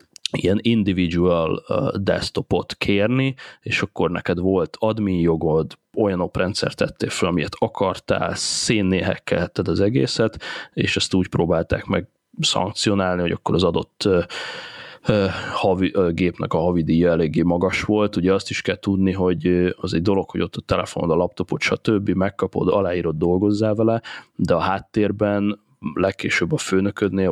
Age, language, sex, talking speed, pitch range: 30-49, Hungarian, male, 145 wpm, 85-100 Hz